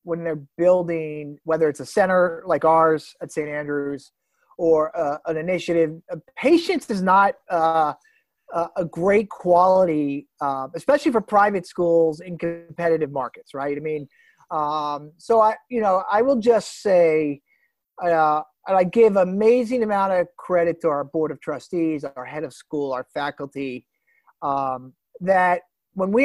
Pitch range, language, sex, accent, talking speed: 150-195 Hz, English, male, American, 150 wpm